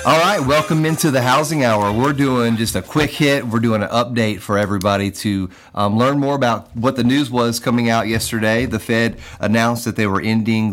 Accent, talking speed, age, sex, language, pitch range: American, 215 wpm, 30-49, male, English, 100-120 Hz